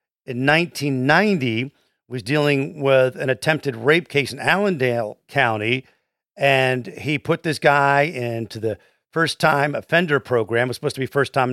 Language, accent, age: English, American, 50-69